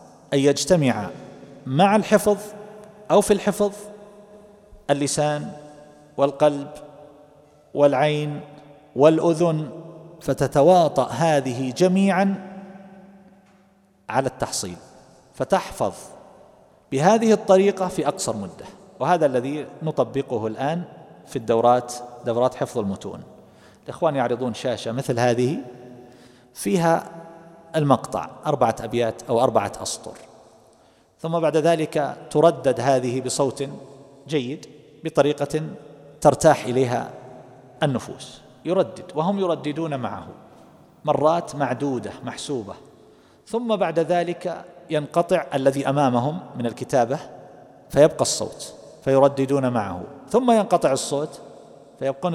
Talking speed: 90 wpm